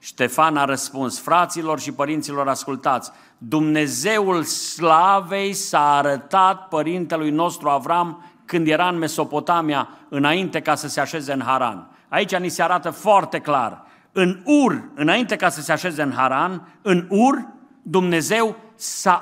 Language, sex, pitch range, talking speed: Romanian, male, 145-200 Hz, 135 wpm